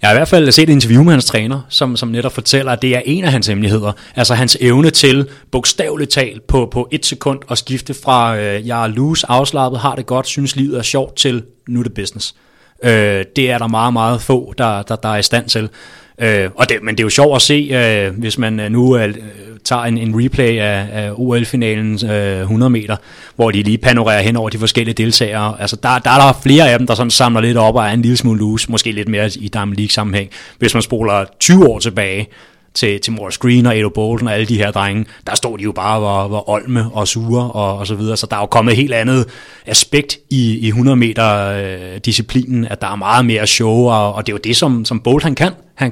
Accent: native